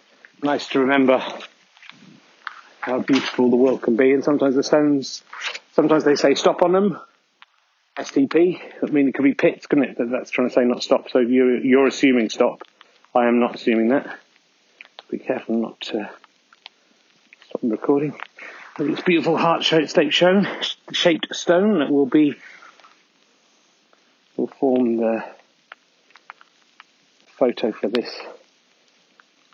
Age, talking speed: 40-59, 135 wpm